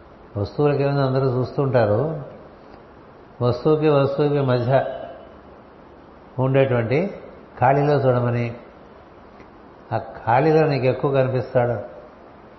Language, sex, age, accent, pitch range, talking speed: Telugu, male, 60-79, native, 115-135 Hz, 70 wpm